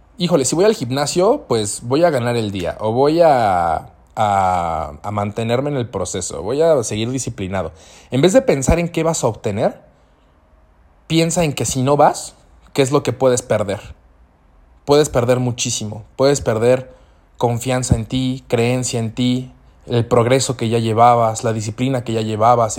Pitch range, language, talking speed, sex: 100-135 Hz, Spanish, 170 wpm, male